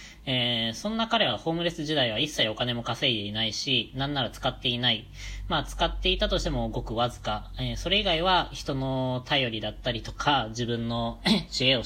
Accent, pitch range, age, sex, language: native, 110-150 Hz, 20-39, female, Japanese